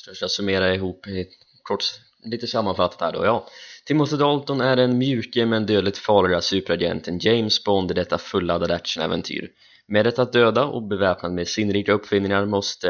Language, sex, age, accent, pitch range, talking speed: Swedish, male, 20-39, native, 90-110 Hz, 170 wpm